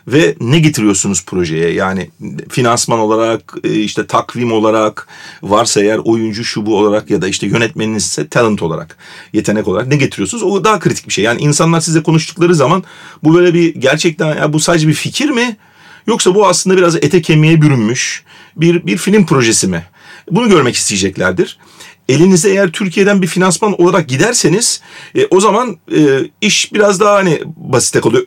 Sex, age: male, 40-59